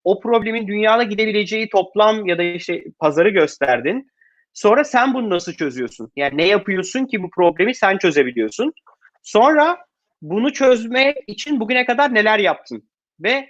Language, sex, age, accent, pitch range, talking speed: Turkish, male, 30-49, native, 175-245 Hz, 140 wpm